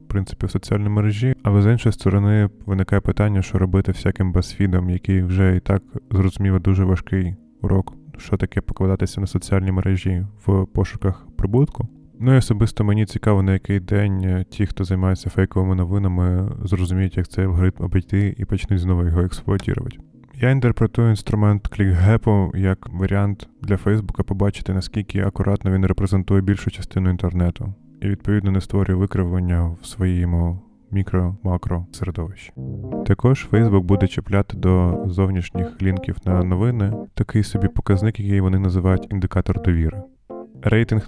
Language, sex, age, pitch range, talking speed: Ukrainian, male, 20-39, 90-105 Hz, 140 wpm